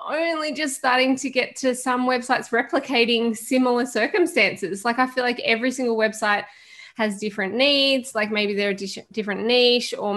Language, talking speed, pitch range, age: English, 165 wpm, 200-245 Hz, 20-39